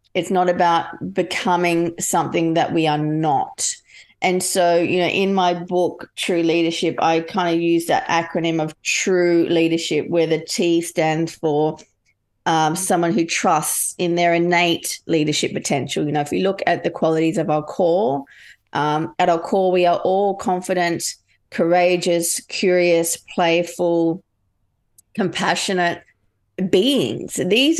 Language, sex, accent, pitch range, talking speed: English, female, Australian, 165-195 Hz, 140 wpm